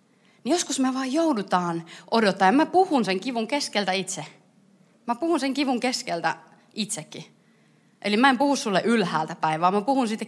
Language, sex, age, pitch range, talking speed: Finnish, female, 30-49, 175-265 Hz, 170 wpm